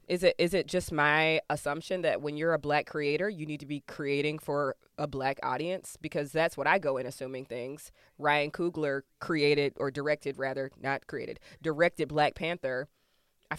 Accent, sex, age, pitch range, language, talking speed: American, female, 20-39, 140-165 Hz, English, 185 wpm